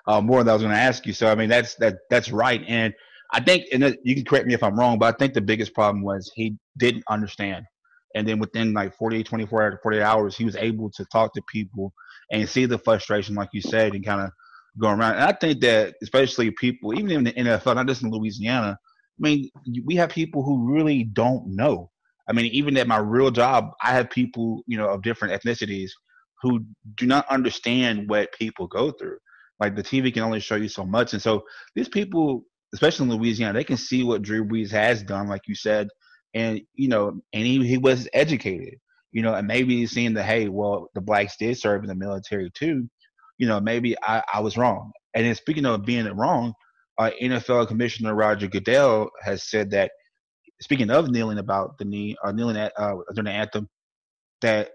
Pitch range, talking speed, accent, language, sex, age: 105-125 Hz, 220 wpm, American, English, male, 30-49